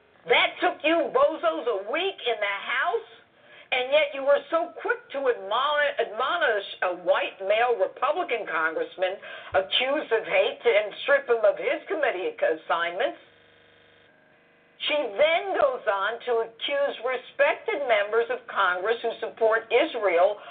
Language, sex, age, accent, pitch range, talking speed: English, female, 50-69, American, 220-315 Hz, 130 wpm